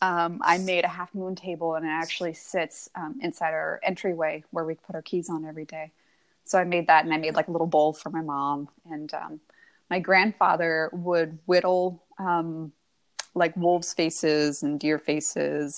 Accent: American